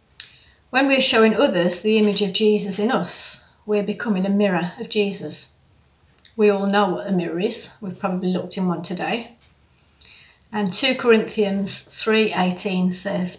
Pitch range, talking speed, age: 180-210 Hz, 150 wpm, 40-59